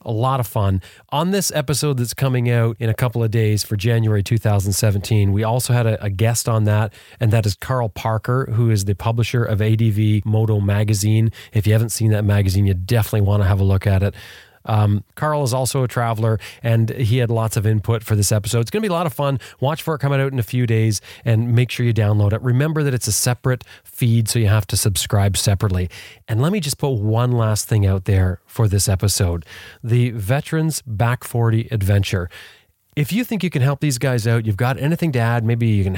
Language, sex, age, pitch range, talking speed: English, male, 30-49, 105-125 Hz, 230 wpm